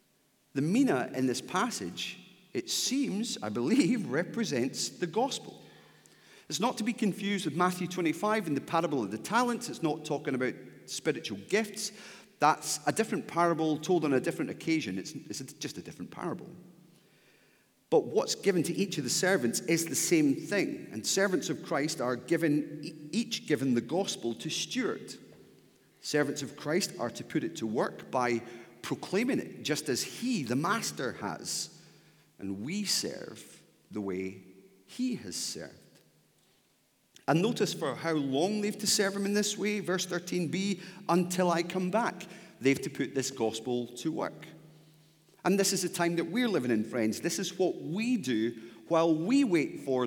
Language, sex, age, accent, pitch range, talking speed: English, male, 40-59, British, 130-200 Hz, 170 wpm